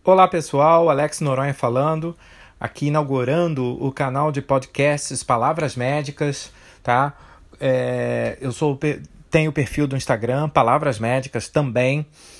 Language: Portuguese